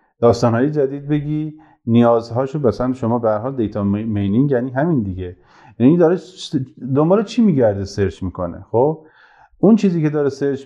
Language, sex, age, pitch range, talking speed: Persian, male, 30-49, 105-145 Hz, 145 wpm